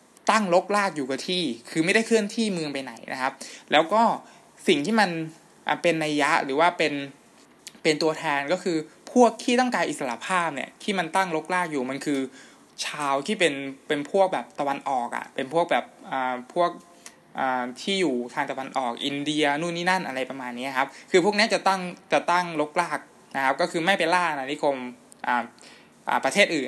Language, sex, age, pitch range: Thai, male, 20-39, 135-180 Hz